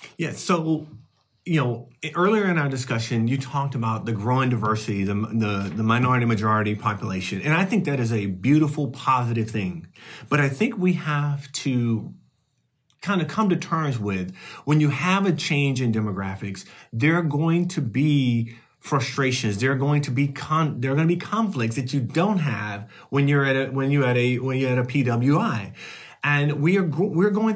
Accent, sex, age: American, male, 40-59